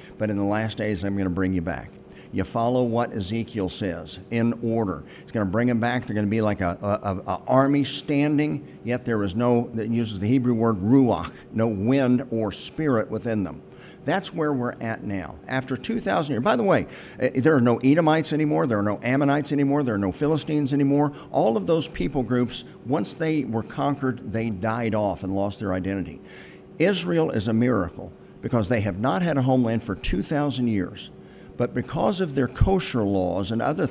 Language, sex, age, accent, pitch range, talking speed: English, male, 50-69, American, 105-135 Hz, 195 wpm